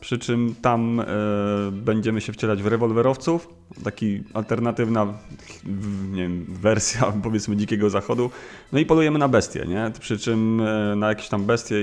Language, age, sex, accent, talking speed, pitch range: Polish, 30-49, male, native, 155 wpm, 105-125 Hz